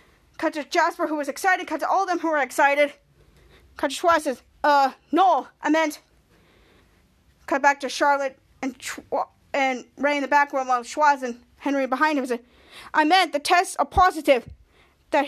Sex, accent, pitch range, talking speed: female, American, 270-325 Hz, 190 wpm